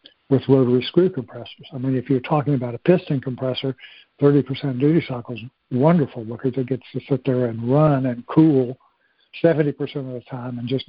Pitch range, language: 130-145 Hz, English